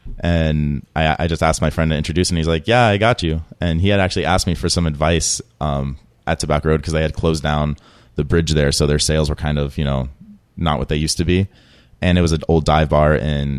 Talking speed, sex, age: 260 wpm, male, 30-49